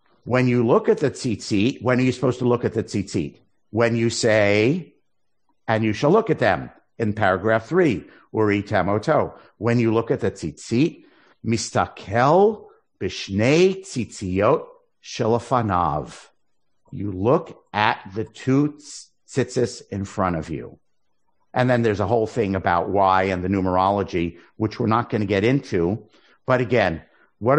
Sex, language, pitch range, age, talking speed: male, English, 100-125 Hz, 50-69, 150 wpm